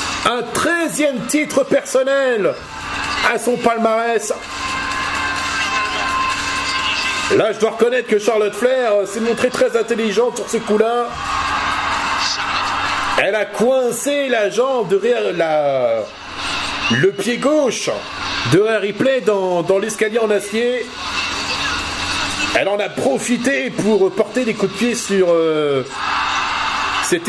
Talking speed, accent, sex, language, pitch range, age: 120 wpm, French, male, French, 170-240 Hz, 50-69